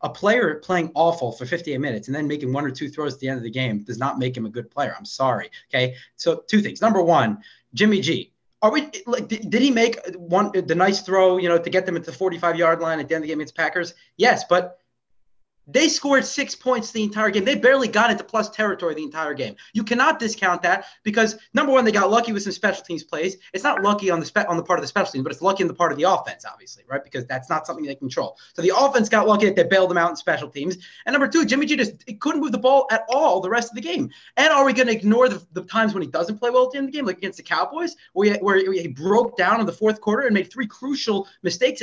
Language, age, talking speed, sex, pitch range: English, 30-49, 285 wpm, male, 160-225 Hz